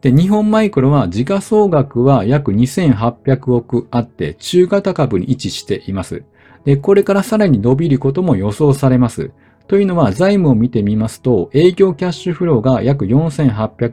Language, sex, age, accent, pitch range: Japanese, male, 40-59, native, 120-175 Hz